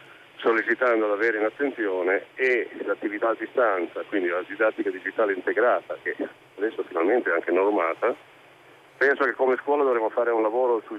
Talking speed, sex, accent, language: 160 wpm, male, native, Italian